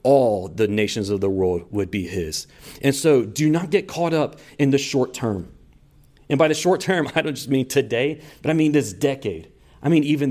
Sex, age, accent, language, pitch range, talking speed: male, 40-59, American, English, 105-140 Hz, 220 wpm